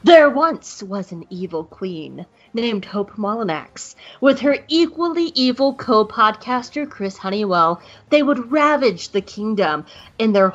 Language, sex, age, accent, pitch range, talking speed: English, female, 30-49, American, 195-275 Hz, 130 wpm